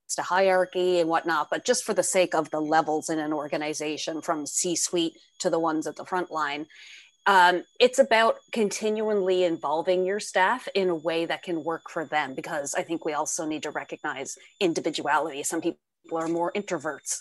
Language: English